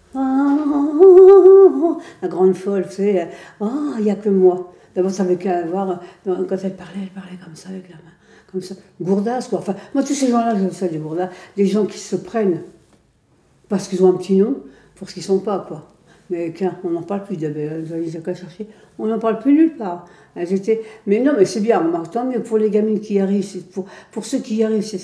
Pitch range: 170-210 Hz